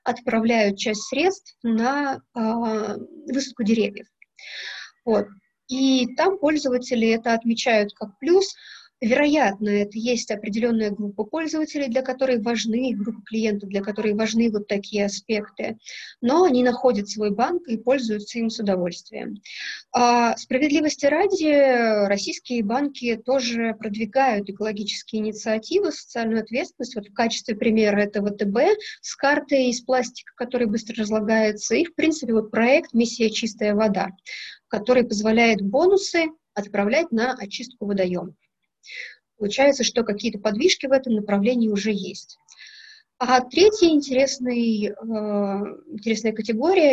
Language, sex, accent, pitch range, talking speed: Russian, female, native, 215-270 Hz, 120 wpm